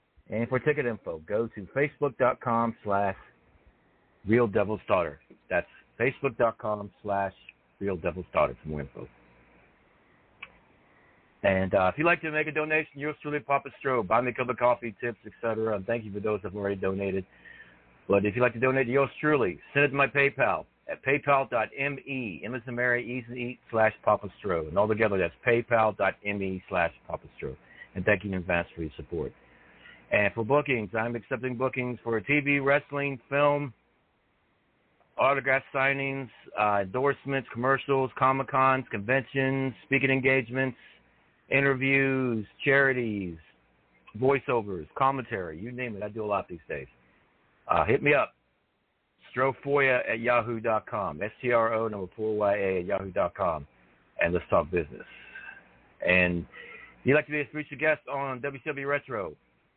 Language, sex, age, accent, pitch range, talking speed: English, male, 60-79, American, 100-135 Hz, 145 wpm